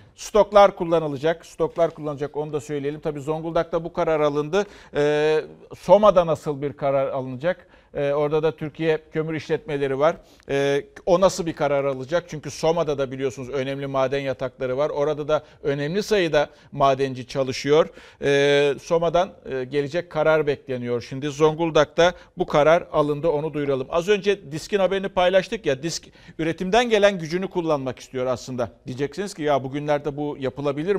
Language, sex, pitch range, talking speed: Turkish, male, 145-185 Hz, 140 wpm